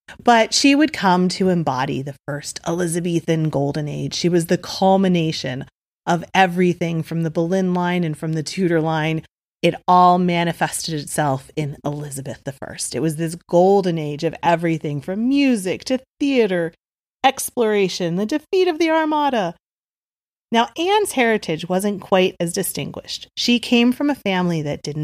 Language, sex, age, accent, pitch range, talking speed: English, female, 30-49, American, 160-210 Hz, 155 wpm